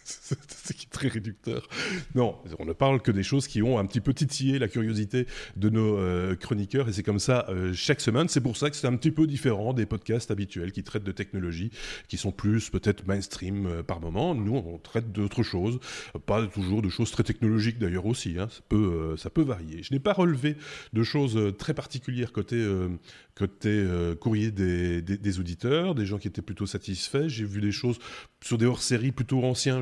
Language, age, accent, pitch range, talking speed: French, 30-49, French, 100-125 Hz, 220 wpm